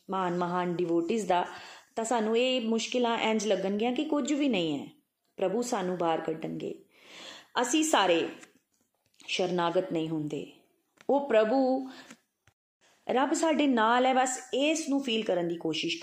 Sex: female